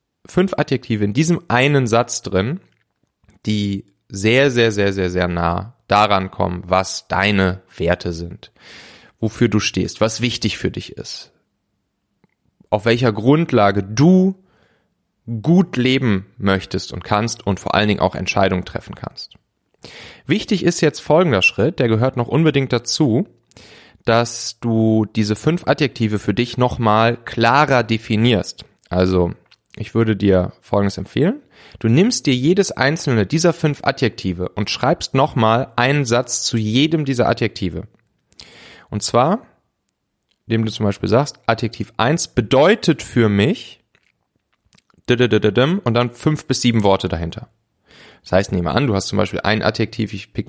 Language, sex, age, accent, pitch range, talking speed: German, male, 30-49, German, 100-130 Hz, 140 wpm